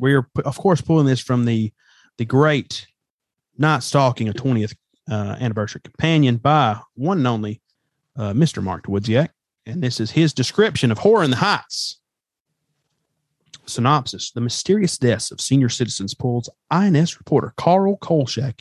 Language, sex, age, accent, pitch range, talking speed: English, male, 30-49, American, 120-150 Hz, 150 wpm